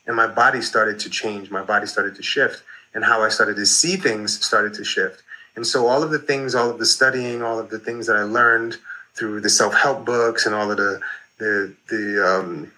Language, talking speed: English, 230 wpm